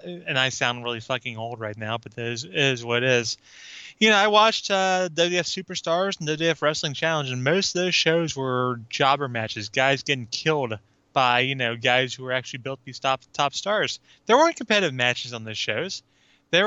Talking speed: 205 wpm